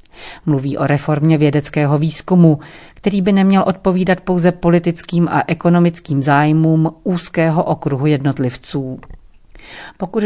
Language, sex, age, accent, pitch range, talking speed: Czech, female, 40-59, native, 145-175 Hz, 105 wpm